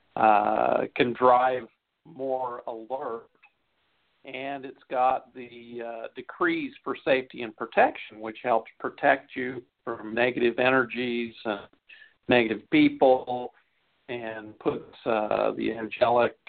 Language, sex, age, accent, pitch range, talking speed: English, male, 50-69, American, 115-130 Hz, 110 wpm